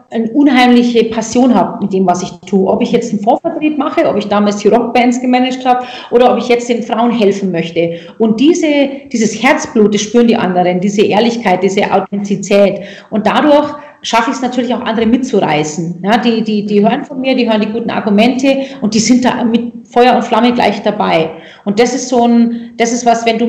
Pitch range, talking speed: 205-240 Hz, 210 wpm